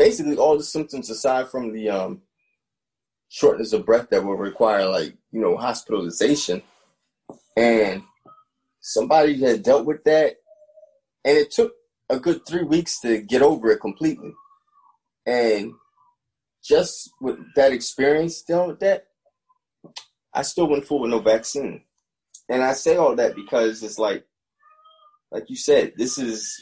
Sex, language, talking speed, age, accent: male, English, 145 wpm, 20-39, American